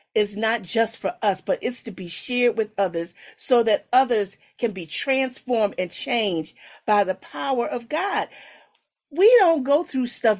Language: English